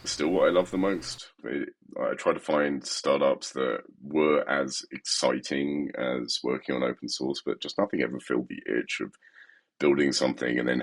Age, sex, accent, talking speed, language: 30-49, male, British, 185 wpm, English